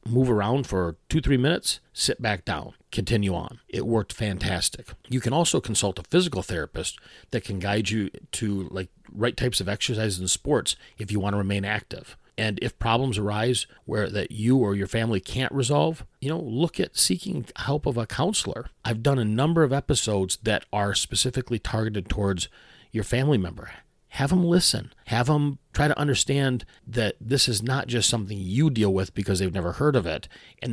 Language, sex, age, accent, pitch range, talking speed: English, male, 40-59, American, 100-130 Hz, 190 wpm